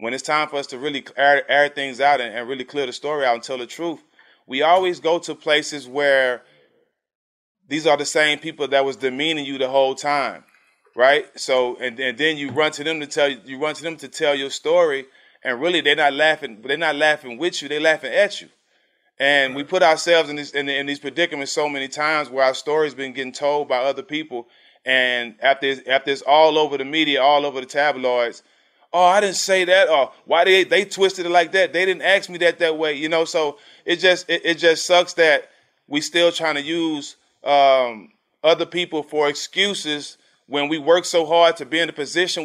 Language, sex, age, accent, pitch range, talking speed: English, male, 30-49, American, 140-165 Hz, 225 wpm